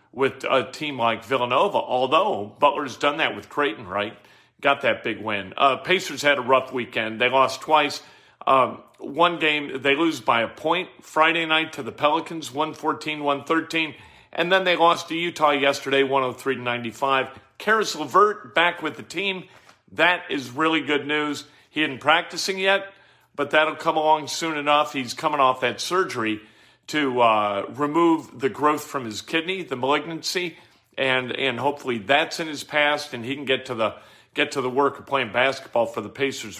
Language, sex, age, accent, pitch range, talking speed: English, male, 50-69, American, 130-160 Hz, 170 wpm